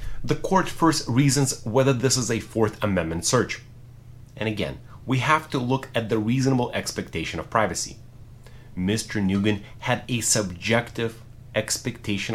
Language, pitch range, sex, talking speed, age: English, 105-125 Hz, male, 140 wpm, 30-49